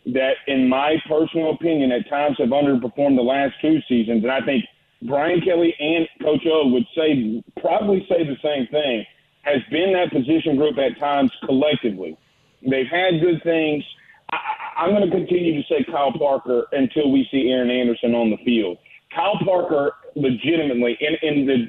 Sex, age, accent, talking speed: male, 40-59, American, 175 wpm